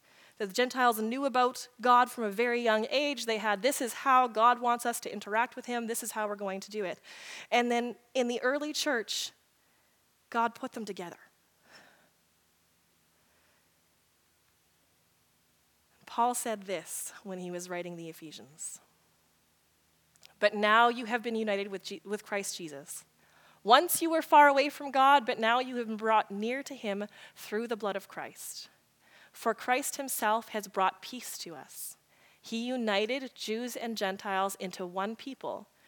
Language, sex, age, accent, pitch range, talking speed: English, female, 20-39, American, 190-245 Hz, 160 wpm